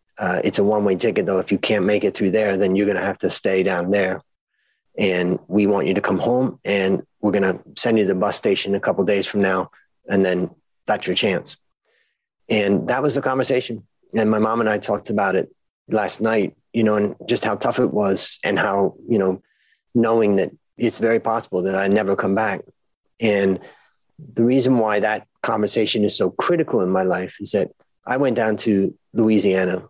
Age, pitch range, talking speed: 30-49, 95-110 Hz, 215 wpm